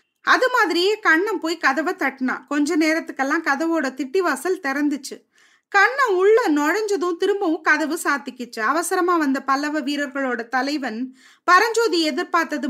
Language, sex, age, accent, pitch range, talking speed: Tamil, female, 20-39, native, 275-370 Hz, 120 wpm